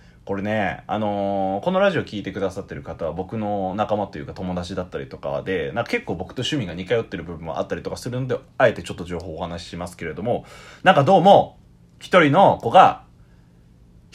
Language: Japanese